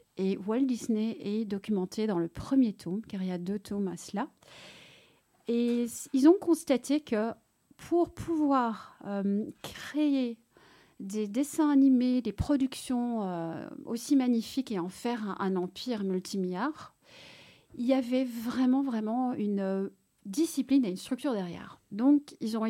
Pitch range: 210-270 Hz